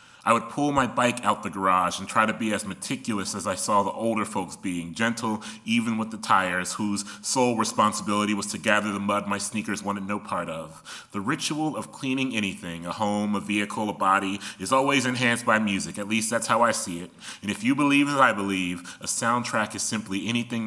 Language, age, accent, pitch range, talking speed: English, 30-49, American, 100-115 Hz, 220 wpm